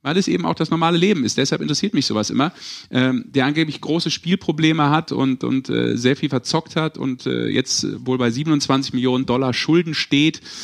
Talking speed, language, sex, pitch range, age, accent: 205 wpm, German, male, 125-150 Hz, 40-59, German